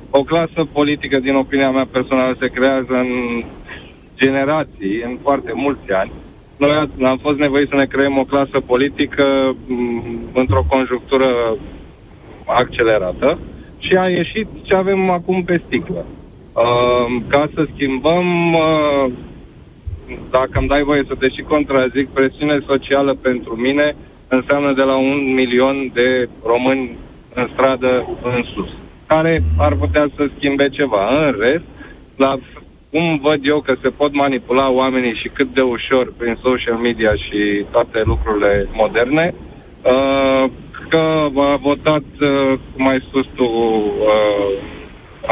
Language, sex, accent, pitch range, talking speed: Romanian, male, native, 125-145 Hz, 135 wpm